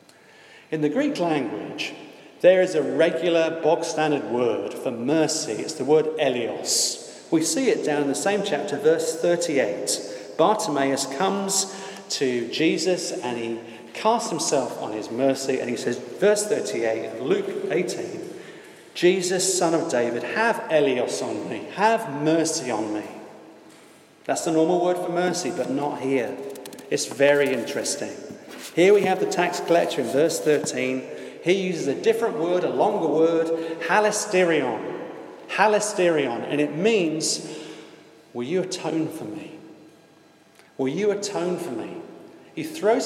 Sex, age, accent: male, 40-59, British